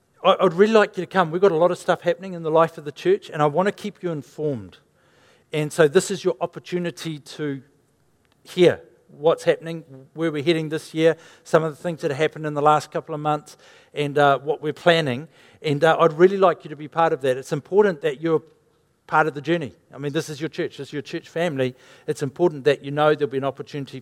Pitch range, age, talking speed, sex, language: 140-170 Hz, 50-69, 245 wpm, male, English